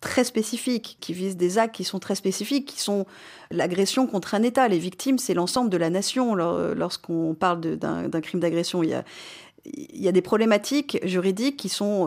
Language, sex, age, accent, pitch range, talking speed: French, female, 40-59, French, 165-210 Hz, 205 wpm